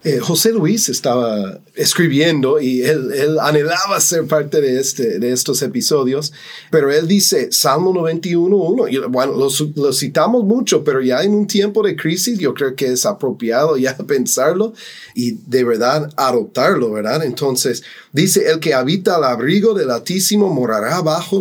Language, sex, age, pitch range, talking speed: English, male, 30-49, 135-205 Hz, 160 wpm